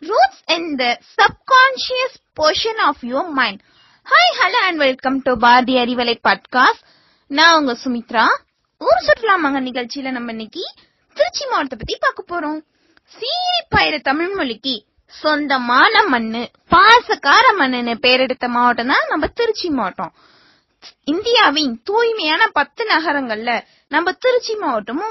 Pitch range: 255-350 Hz